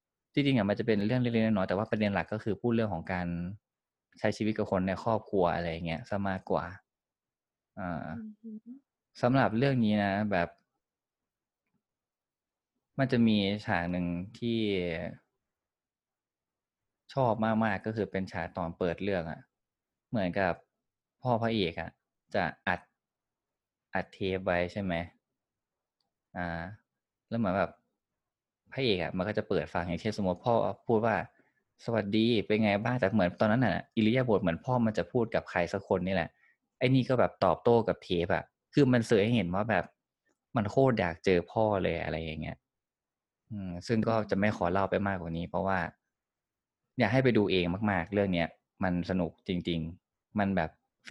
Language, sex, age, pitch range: Thai, male, 20-39, 90-115 Hz